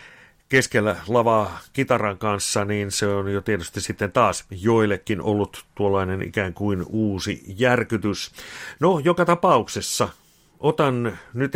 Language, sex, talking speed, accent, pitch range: Finnish, male, 120 wpm, native, 105-120 Hz